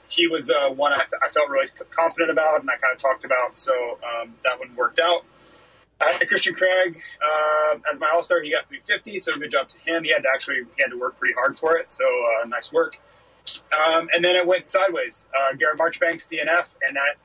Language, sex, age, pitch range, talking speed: English, male, 30-49, 155-220 Hz, 235 wpm